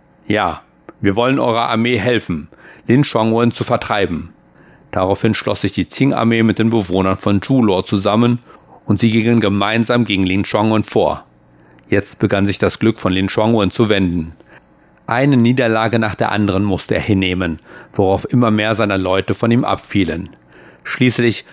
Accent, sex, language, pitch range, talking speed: German, male, German, 95-115 Hz, 155 wpm